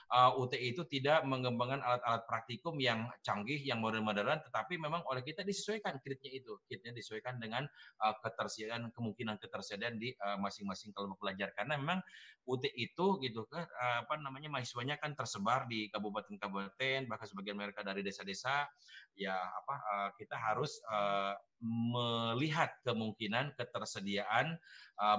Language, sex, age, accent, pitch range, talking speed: Indonesian, male, 30-49, native, 110-150 Hz, 145 wpm